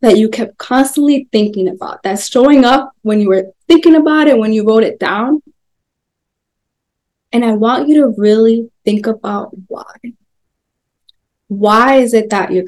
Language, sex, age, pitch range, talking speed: English, female, 20-39, 215-245 Hz, 160 wpm